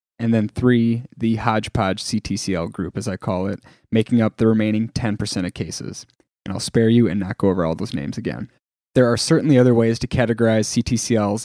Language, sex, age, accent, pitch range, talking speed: English, male, 10-29, American, 105-125 Hz, 200 wpm